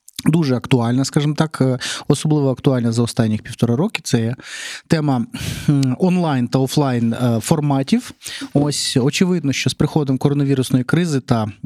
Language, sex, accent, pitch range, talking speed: Ukrainian, male, native, 120-155 Hz, 125 wpm